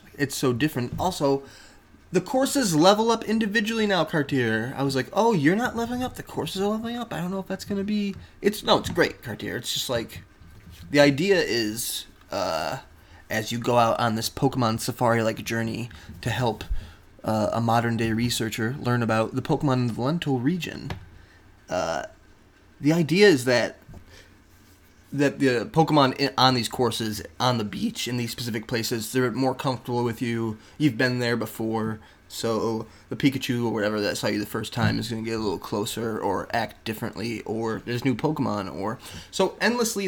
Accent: American